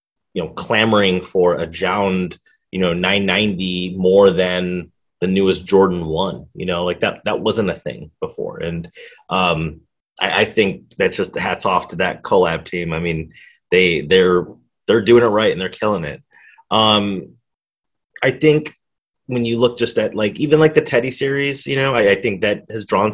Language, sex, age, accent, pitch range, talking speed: English, male, 30-49, American, 90-115 Hz, 185 wpm